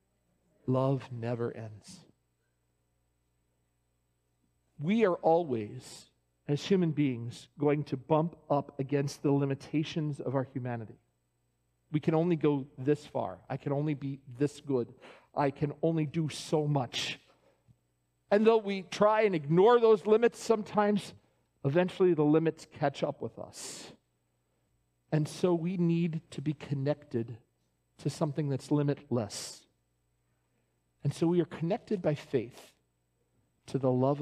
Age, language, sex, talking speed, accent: 40-59, English, male, 130 wpm, American